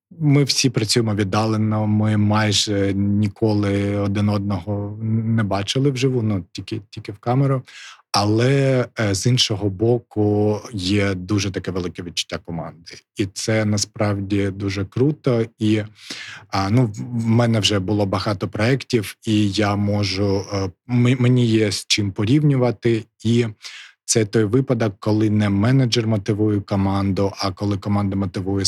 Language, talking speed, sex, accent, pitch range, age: Ukrainian, 130 wpm, male, native, 100-110 Hz, 20-39